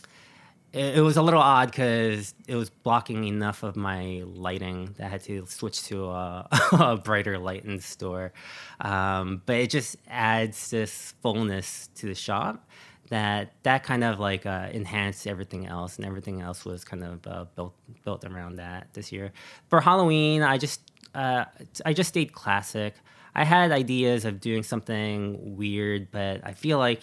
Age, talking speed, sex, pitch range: 20-39, 175 wpm, male, 95-120 Hz